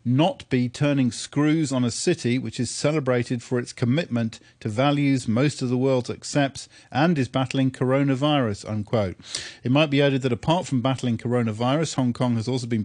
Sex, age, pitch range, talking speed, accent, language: male, 40-59, 115-135 Hz, 180 wpm, British, English